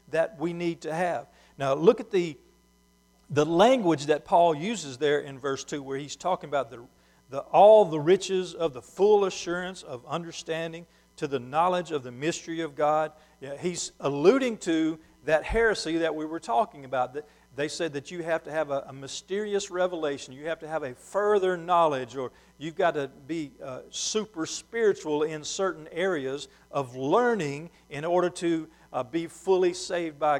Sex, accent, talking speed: male, American, 180 wpm